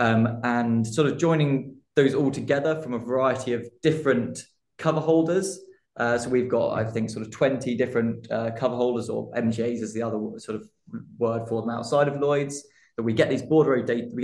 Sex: male